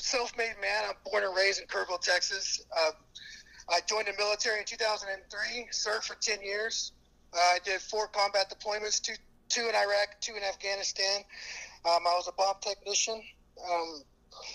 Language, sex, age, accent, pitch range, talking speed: English, male, 30-49, American, 165-200 Hz, 165 wpm